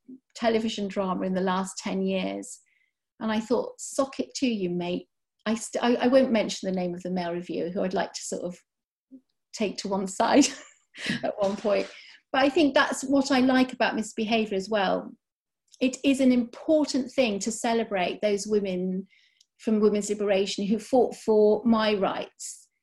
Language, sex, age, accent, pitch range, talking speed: English, female, 40-59, British, 195-255 Hz, 180 wpm